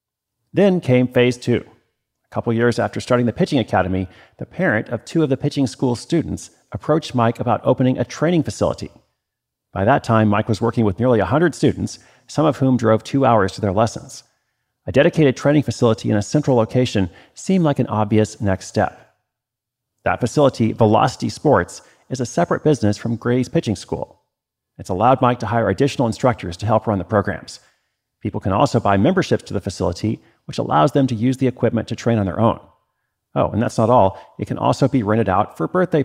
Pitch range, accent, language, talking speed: 105-130 Hz, American, English, 195 wpm